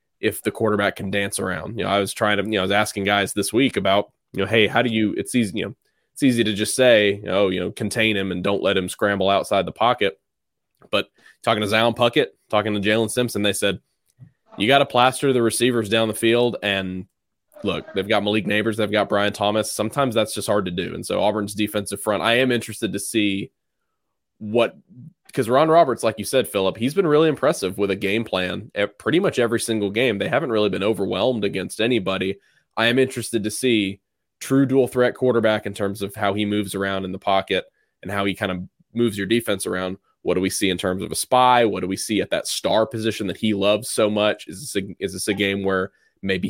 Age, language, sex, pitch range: 20-39, English, male, 100-115 Hz